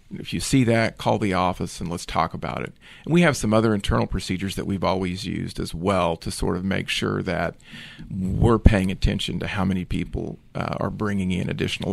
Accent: American